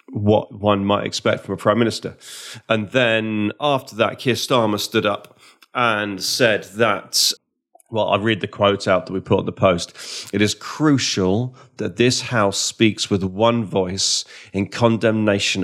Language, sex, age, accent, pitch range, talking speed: English, male, 30-49, British, 95-110 Hz, 165 wpm